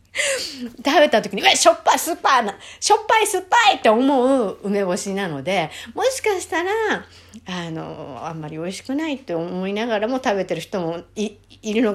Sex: female